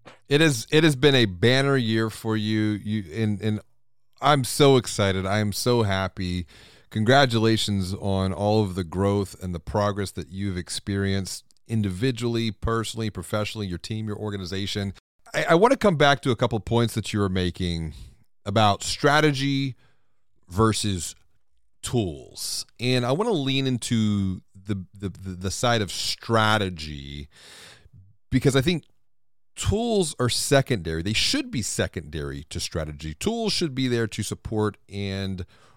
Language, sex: English, male